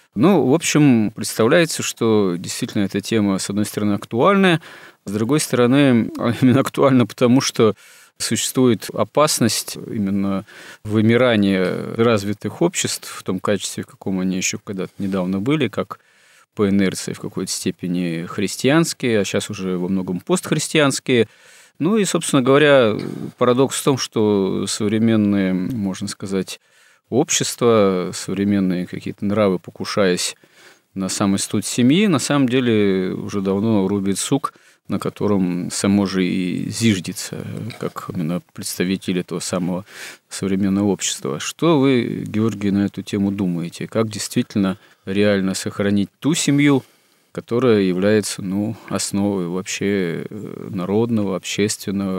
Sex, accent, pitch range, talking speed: male, native, 95-115 Hz, 125 wpm